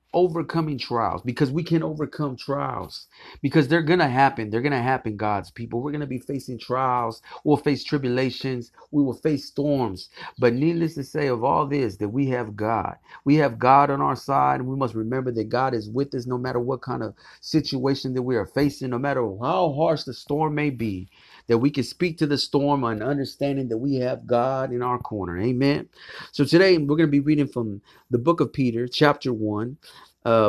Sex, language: male, English